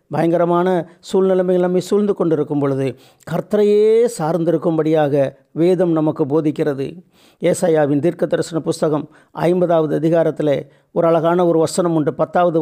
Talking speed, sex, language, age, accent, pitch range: 110 wpm, male, Tamil, 50-69, native, 150-185 Hz